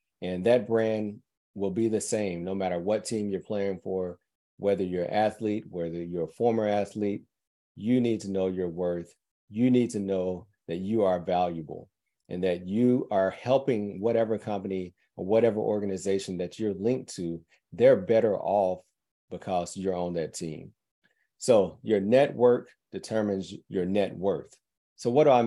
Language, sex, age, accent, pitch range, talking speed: English, male, 40-59, American, 90-110 Hz, 165 wpm